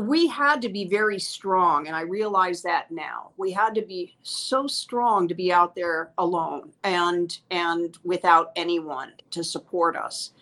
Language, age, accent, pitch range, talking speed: English, 50-69, American, 165-190 Hz, 165 wpm